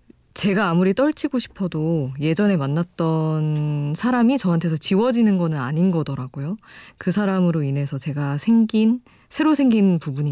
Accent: native